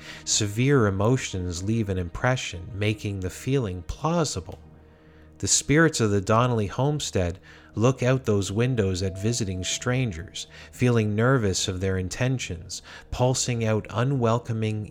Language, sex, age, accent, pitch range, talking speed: English, male, 30-49, American, 85-115 Hz, 120 wpm